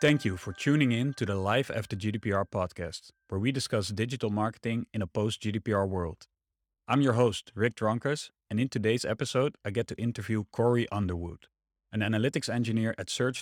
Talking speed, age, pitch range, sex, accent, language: 180 wpm, 30-49, 95-120 Hz, male, Dutch, English